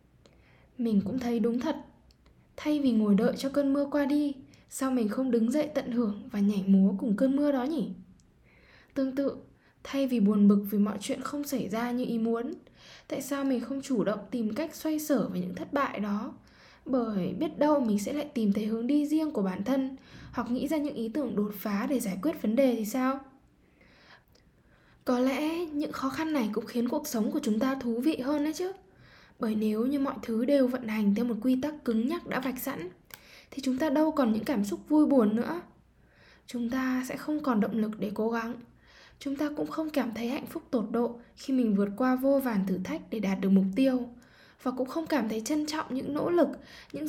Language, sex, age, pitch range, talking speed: Vietnamese, female, 10-29, 220-280 Hz, 225 wpm